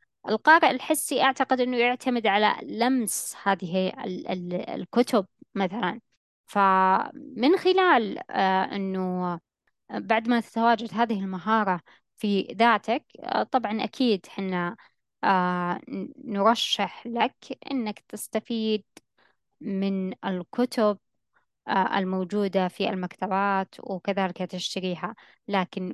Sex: female